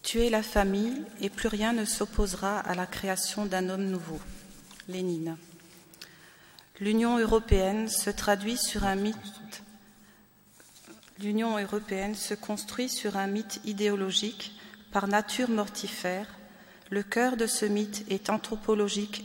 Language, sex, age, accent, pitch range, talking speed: French, female, 40-59, French, 195-215 Hz, 105 wpm